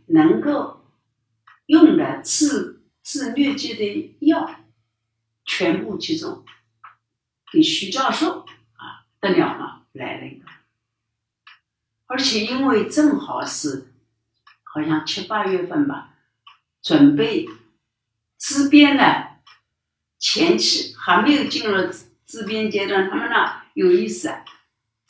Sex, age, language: female, 60-79, Chinese